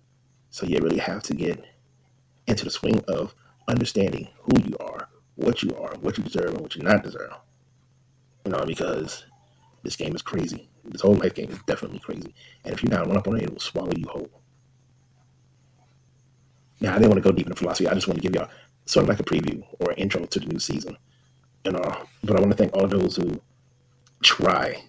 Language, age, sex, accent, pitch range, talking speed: English, 30-49, male, American, 105-130 Hz, 225 wpm